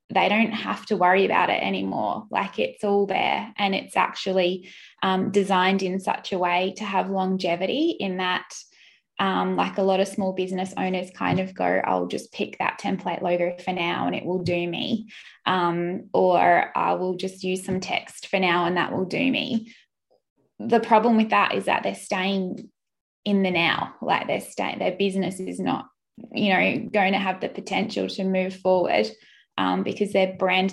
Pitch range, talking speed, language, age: 180-200 Hz, 190 wpm, English, 10-29